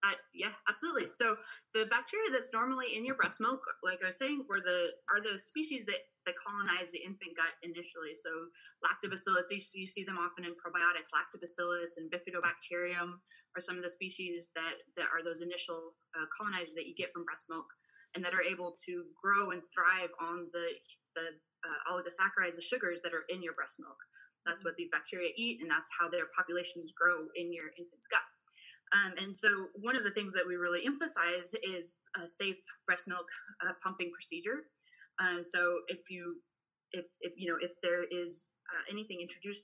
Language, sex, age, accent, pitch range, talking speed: English, female, 20-39, American, 170-200 Hz, 195 wpm